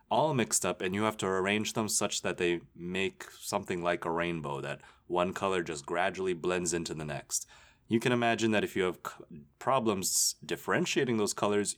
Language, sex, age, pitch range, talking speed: English, male, 20-39, 95-125 Hz, 190 wpm